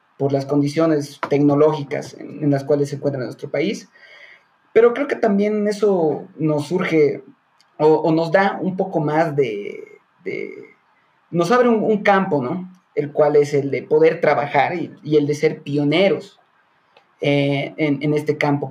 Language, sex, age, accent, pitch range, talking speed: Spanish, male, 30-49, Mexican, 150-205 Hz, 165 wpm